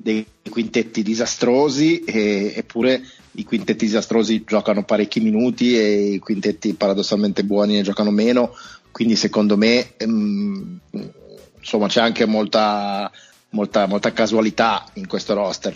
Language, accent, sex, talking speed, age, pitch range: Italian, native, male, 120 wpm, 30-49, 105-115 Hz